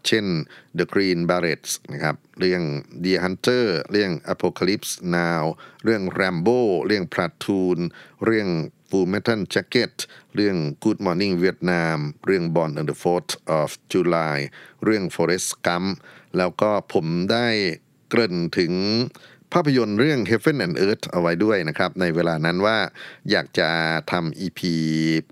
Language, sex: Thai, male